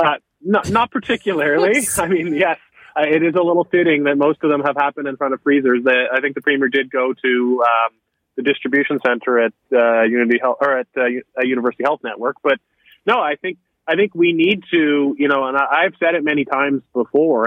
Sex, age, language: male, 30-49, English